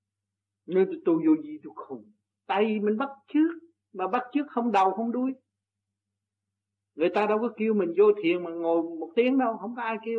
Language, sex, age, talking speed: Vietnamese, male, 60-79, 195 wpm